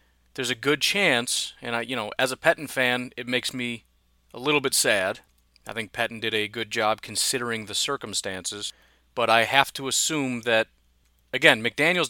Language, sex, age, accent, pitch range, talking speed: English, male, 30-49, American, 115-150 Hz, 185 wpm